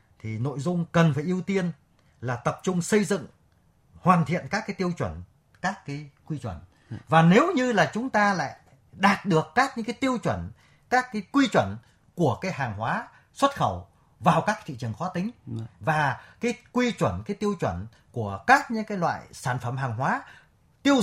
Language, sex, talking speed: Vietnamese, male, 195 wpm